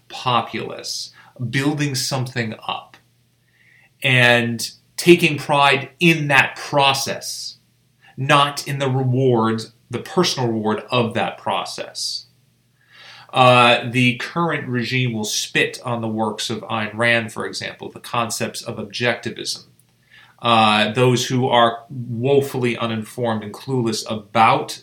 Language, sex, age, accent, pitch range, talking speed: English, male, 30-49, American, 110-130 Hz, 115 wpm